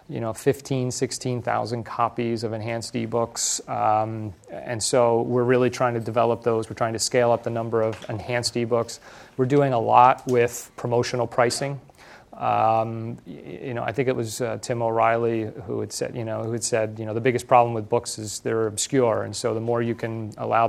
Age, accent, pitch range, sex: 30-49, American, 115-125 Hz, male